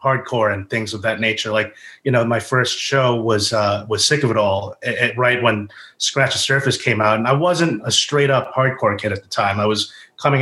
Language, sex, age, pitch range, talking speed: English, male, 30-49, 110-135 Hz, 230 wpm